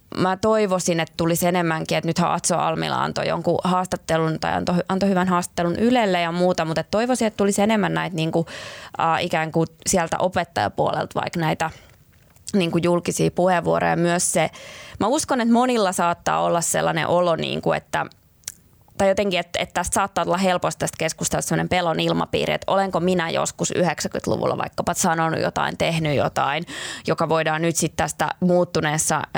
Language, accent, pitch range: Finnish, native, 160-190 Hz